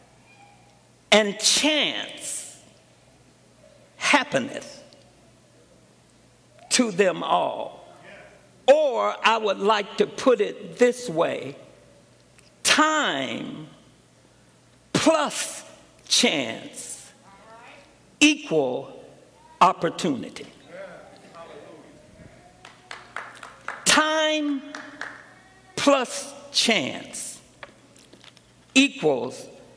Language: English